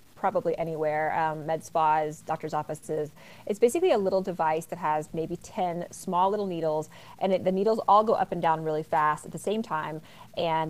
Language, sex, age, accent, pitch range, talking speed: English, female, 30-49, American, 160-195 Hz, 195 wpm